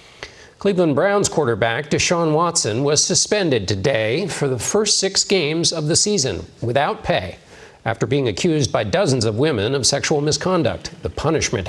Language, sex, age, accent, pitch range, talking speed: English, male, 50-69, American, 120-175 Hz, 155 wpm